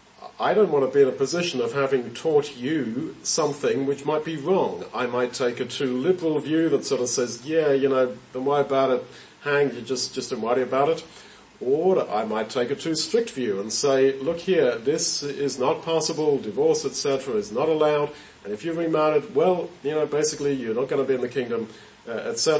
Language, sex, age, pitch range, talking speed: English, male, 40-59, 130-175 Hz, 215 wpm